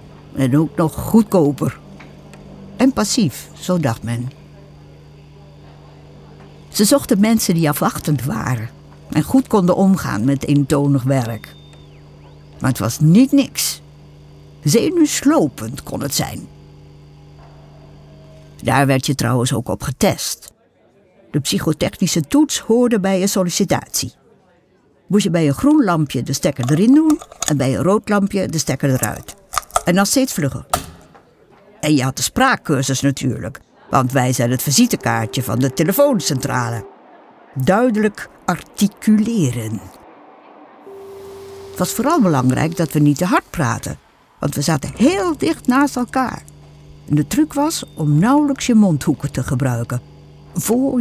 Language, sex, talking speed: Dutch, female, 130 wpm